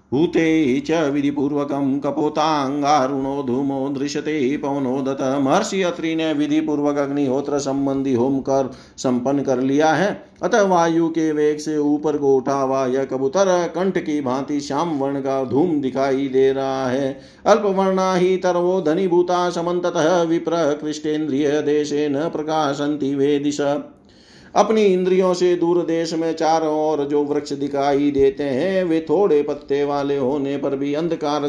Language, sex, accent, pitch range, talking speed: Hindi, male, native, 140-165 Hz, 135 wpm